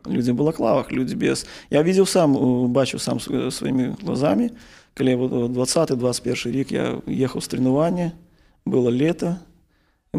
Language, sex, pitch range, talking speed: Ukrainian, male, 130-160 Hz, 130 wpm